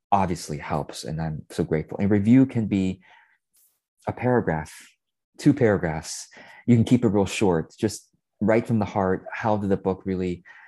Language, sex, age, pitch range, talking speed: English, male, 30-49, 85-100 Hz, 170 wpm